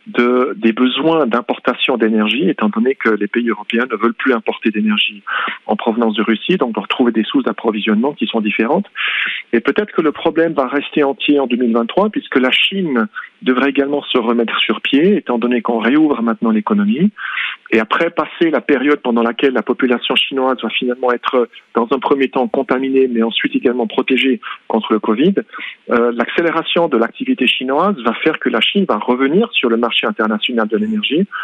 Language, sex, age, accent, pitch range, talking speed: French, male, 40-59, French, 115-150 Hz, 185 wpm